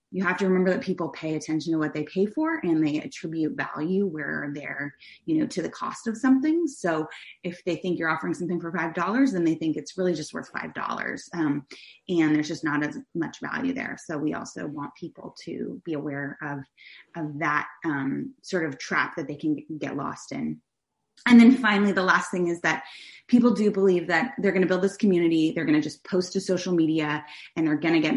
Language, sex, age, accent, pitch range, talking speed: English, female, 20-39, American, 150-195 Hz, 220 wpm